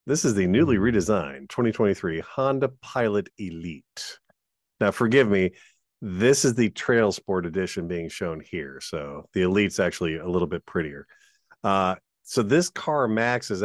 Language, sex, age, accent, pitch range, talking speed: English, male, 40-59, American, 90-115 Hz, 150 wpm